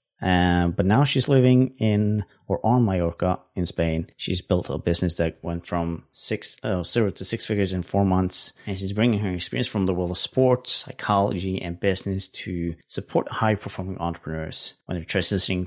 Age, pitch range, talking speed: 30-49, 85-105 Hz, 175 wpm